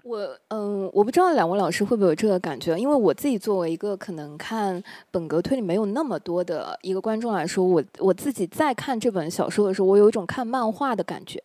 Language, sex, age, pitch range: Chinese, female, 20-39, 190-250 Hz